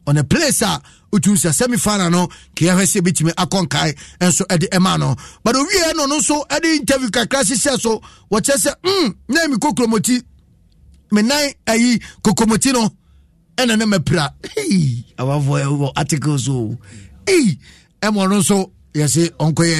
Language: English